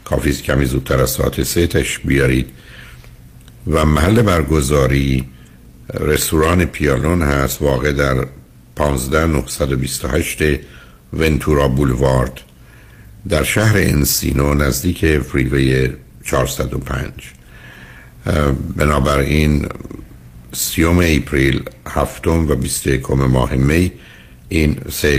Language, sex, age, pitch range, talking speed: Persian, male, 60-79, 65-80 Hz, 90 wpm